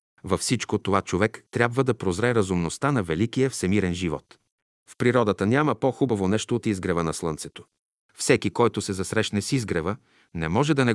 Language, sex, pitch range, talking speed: Bulgarian, male, 90-120 Hz, 170 wpm